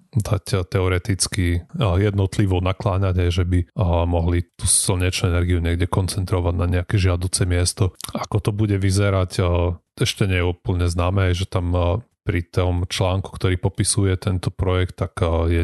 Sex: male